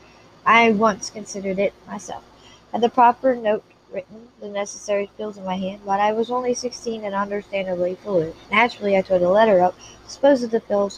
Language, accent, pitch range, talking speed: English, American, 190-230 Hz, 185 wpm